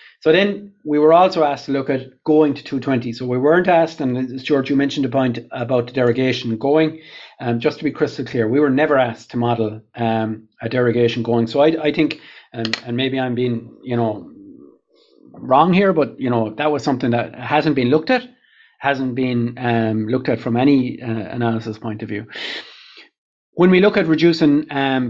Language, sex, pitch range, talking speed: English, male, 120-150 Hz, 205 wpm